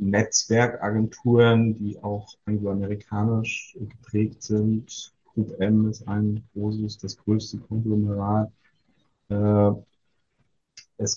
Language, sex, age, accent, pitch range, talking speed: German, male, 50-69, German, 105-120 Hz, 80 wpm